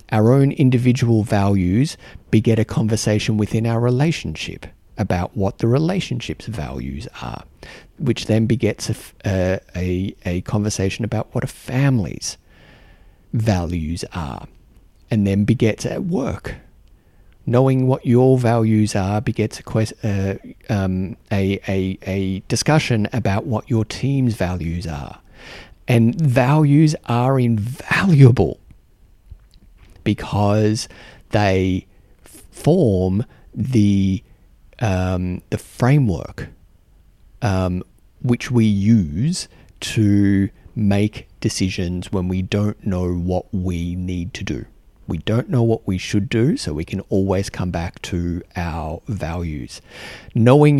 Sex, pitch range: male, 90-120 Hz